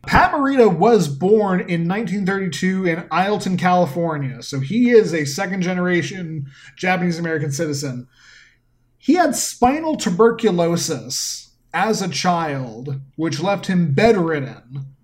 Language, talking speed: English, 115 wpm